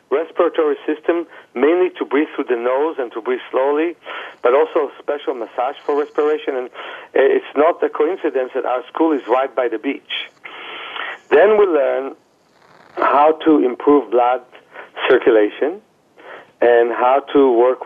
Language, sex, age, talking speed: English, male, 50-69, 145 wpm